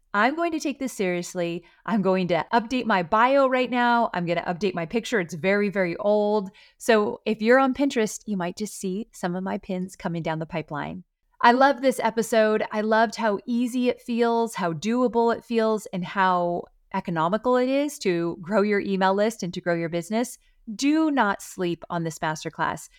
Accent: American